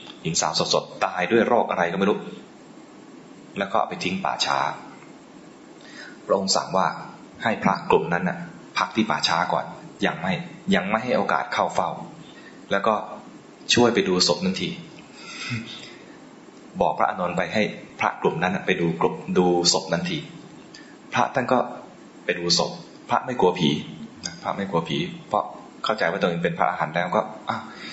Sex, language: male, English